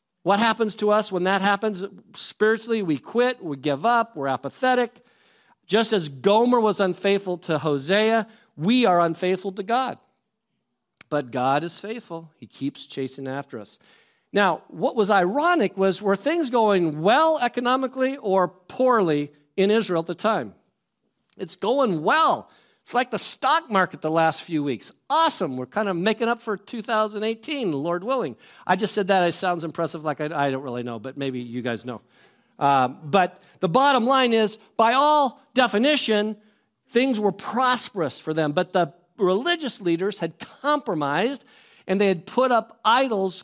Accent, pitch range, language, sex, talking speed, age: American, 165-230 Hz, English, male, 165 wpm, 50-69